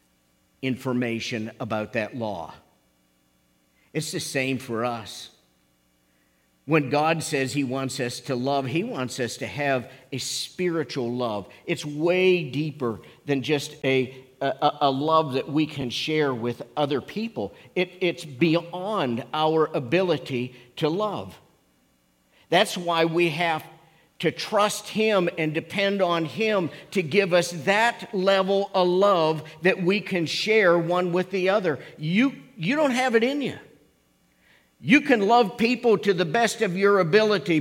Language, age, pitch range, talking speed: English, 50-69, 125-185 Hz, 145 wpm